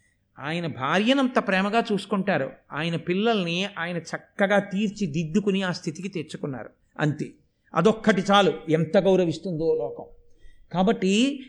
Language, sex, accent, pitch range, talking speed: Telugu, male, native, 175-245 Hz, 105 wpm